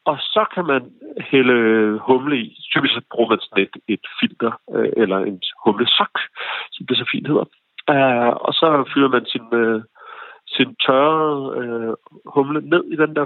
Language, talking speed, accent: Danish, 155 wpm, native